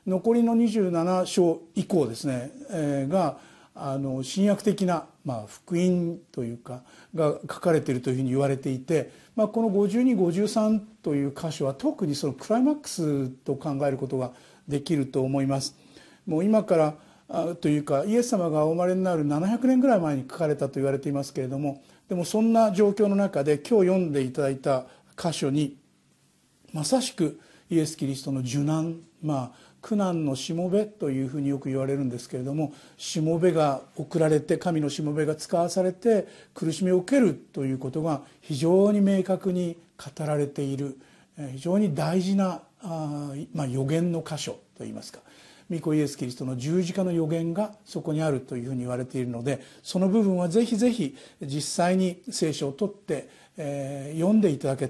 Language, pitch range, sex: Japanese, 140-185 Hz, male